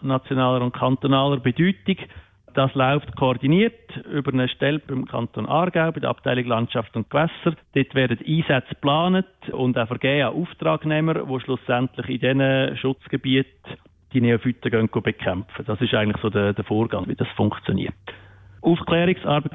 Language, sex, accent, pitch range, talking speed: German, male, Austrian, 120-140 Hz, 140 wpm